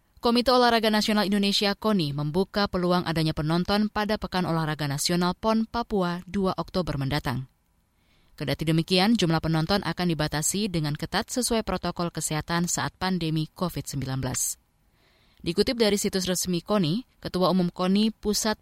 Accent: native